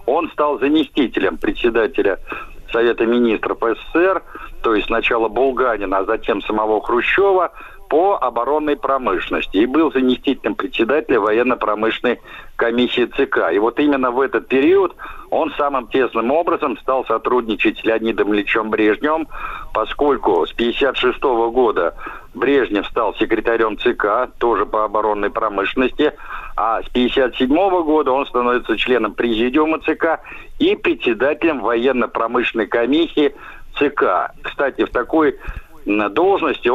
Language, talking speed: Russian, 115 wpm